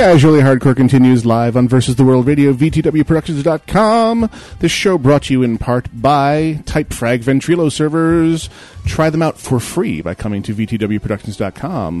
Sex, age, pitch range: male, 30-49, 120-155 Hz